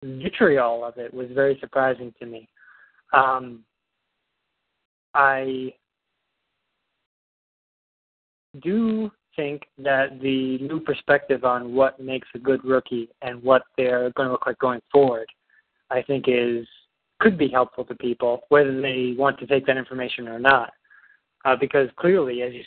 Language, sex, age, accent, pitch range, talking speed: English, male, 20-39, American, 125-140 Hz, 140 wpm